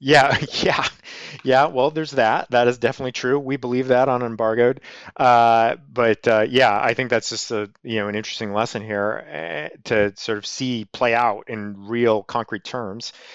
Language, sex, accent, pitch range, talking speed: English, male, American, 105-125 Hz, 180 wpm